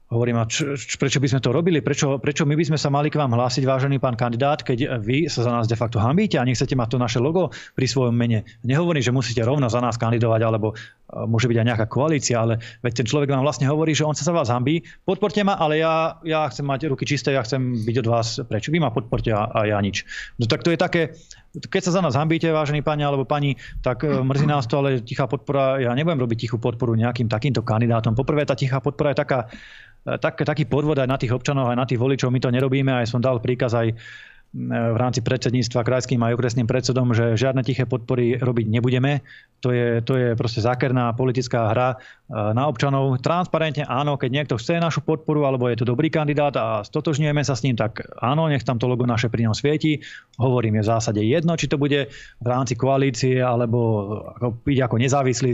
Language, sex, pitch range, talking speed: Slovak, male, 120-145 Hz, 220 wpm